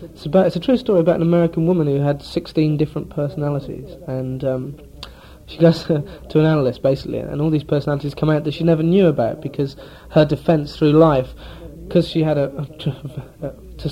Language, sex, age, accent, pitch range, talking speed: English, male, 30-49, British, 140-160 Hz, 195 wpm